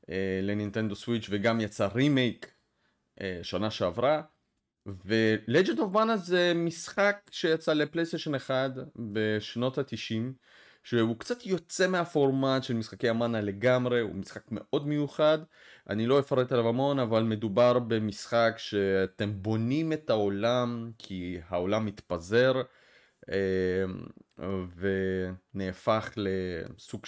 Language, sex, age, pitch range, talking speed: Hebrew, male, 30-49, 105-140 Hz, 100 wpm